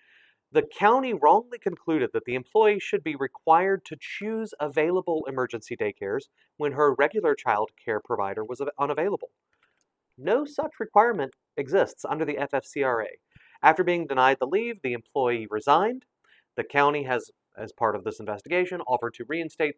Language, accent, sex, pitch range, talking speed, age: English, American, male, 115-195 Hz, 150 wpm, 30-49